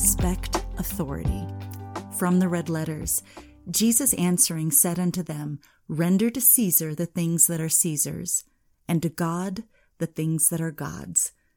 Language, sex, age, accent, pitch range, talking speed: English, female, 40-59, American, 145-180 Hz, 140 wpm